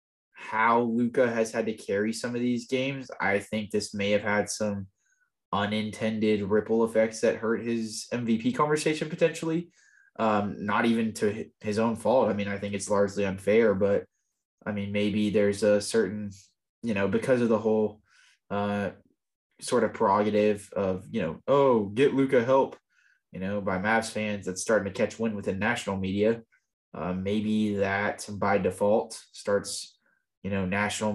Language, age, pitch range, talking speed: English, 20-39, 100-110 Hz, 165 wpm